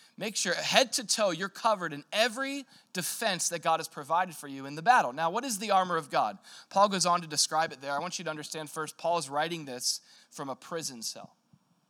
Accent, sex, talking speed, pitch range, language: American, male, 235 wpm, 150-215 Hz, English